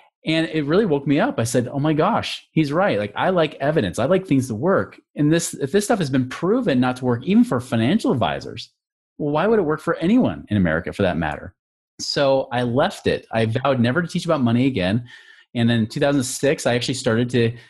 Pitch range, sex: 110-145 Hz, male